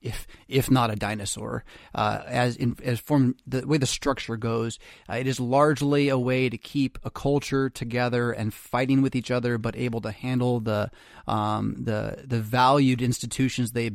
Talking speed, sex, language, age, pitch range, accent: 180 wpm, male, English, 30-49, 115-140 Hz, American